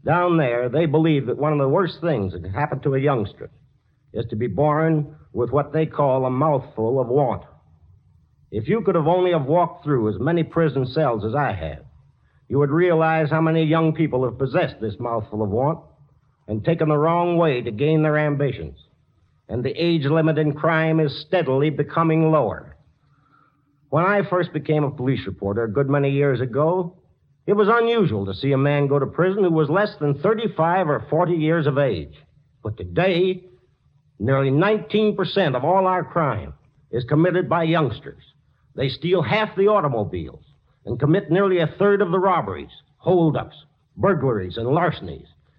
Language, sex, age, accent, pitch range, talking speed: English, male, 60-79, American, 135-170 Hz, 180 wpm